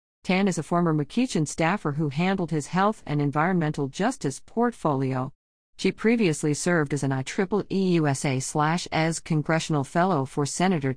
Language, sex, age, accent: English, female, 50-69, American